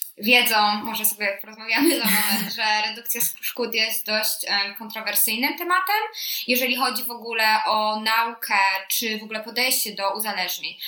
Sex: female